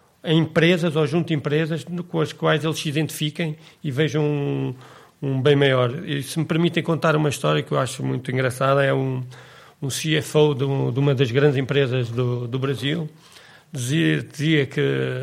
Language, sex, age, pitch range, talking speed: Portuguese, male, 40-59, 145-170 Hz, 185 wpm